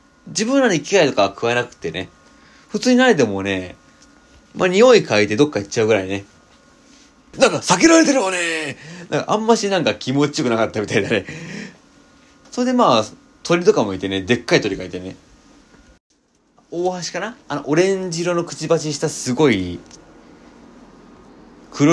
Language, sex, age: Japanese, male, 30-49